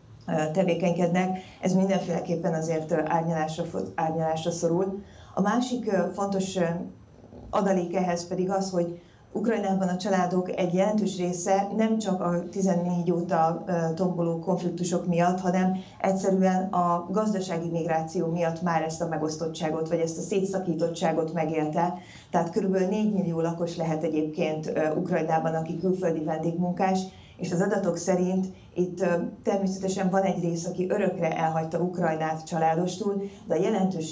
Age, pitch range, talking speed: 30-49, 165-185 Hz, 125 wpm